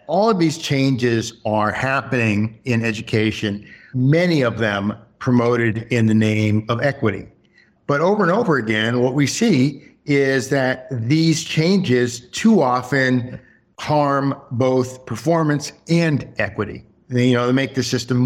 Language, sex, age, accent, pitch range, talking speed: English, male, 50-69, American, 110-130 Hz, 140 wpm